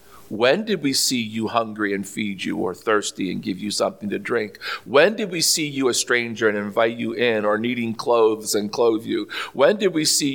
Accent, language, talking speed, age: American, English, 220 wpm, 50-69